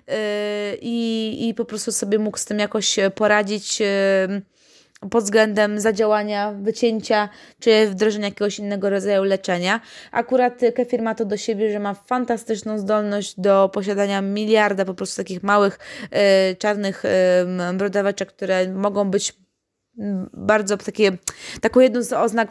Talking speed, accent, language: 130 wpm, native, Polish